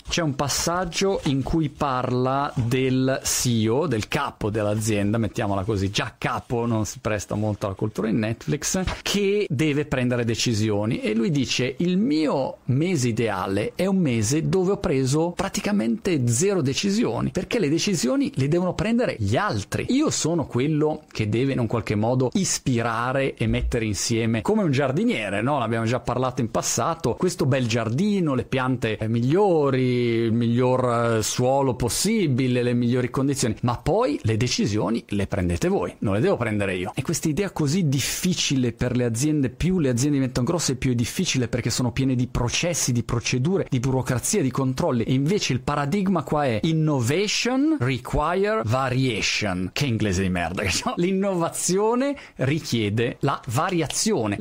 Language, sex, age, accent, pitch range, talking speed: Italian, male, 40-59, native, 115-165 Hz, 160 wpm